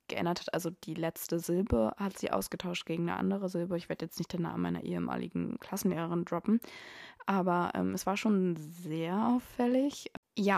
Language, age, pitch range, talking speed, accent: German, 20-39, 175-195 Hz, 175 wpm, German